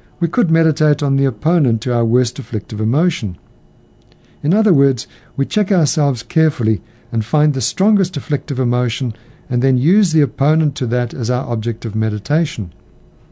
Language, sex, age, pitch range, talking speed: English, male, 60-79, 120-155 Hz, 160 wpm